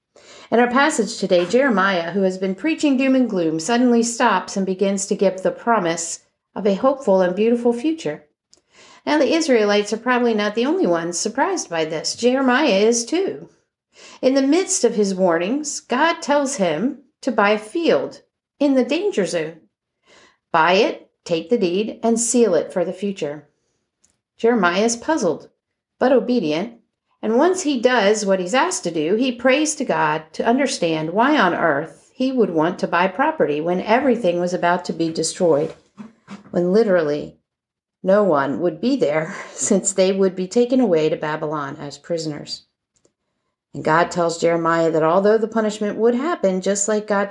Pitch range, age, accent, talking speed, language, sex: 175-250 Hz, 50-69, American, 170 wpm, English, female